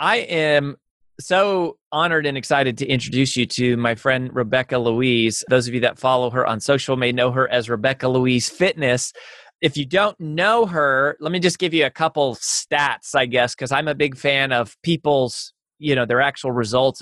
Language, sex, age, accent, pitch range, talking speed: English, male, 30-49, American, 125-160 Hz, 200 wpm